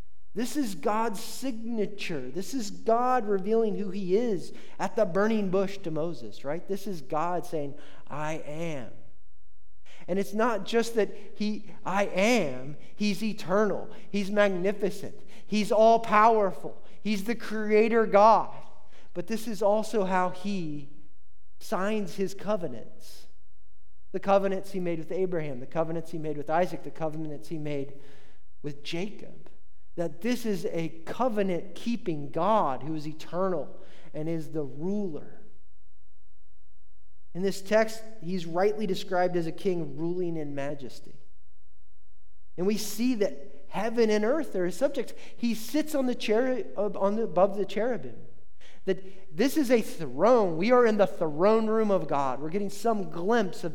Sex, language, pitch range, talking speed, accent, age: male, English, 150-215 Hz, 145 wpm, American, 40-59